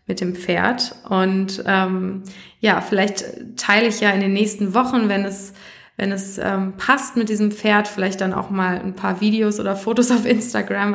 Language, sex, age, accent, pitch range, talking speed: German, female, 20-39, German, 195-230 Hz, 185 wpm